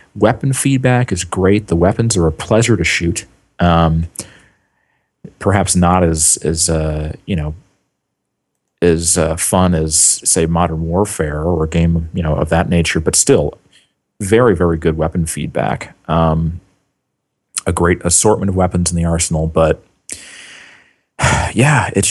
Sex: male